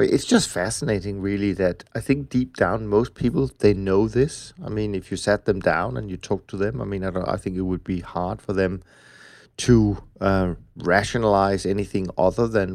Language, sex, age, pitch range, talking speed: English, male, 30-49, 95-115 Hz, 205 wpm